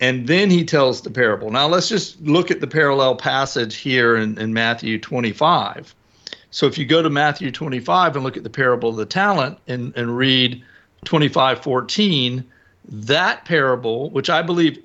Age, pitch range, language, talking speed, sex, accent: 50-69, 125-160 Hz, English, 180 wpm, male, American